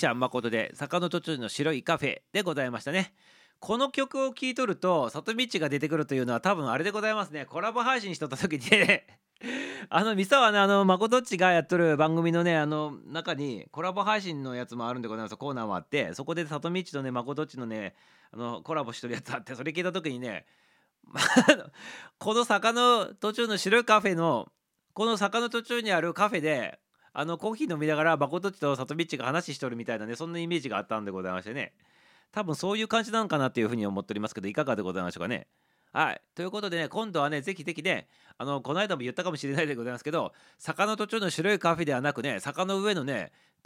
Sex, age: male, 40-59